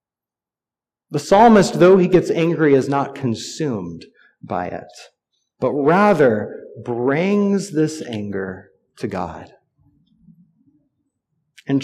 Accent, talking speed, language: American, 95 wpm, English